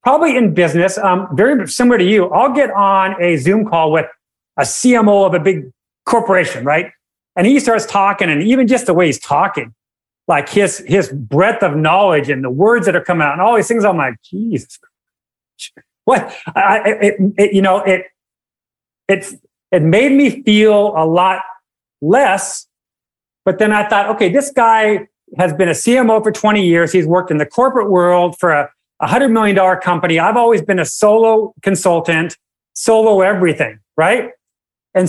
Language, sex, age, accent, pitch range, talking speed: English, male, 40-59, American, 170-220 Hz, 175 wpm